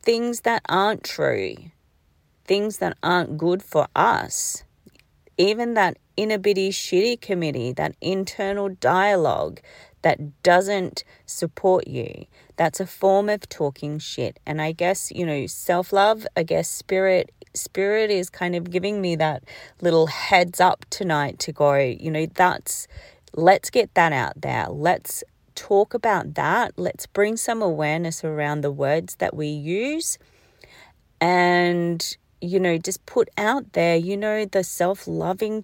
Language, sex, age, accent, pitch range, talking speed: English, female, 40-59, Australian, 160-210 Hz, 145 wpm